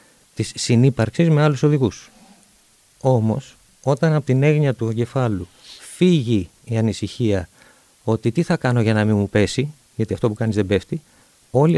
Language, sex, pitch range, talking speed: Greek, male, 110-140 Hz, 160 wpm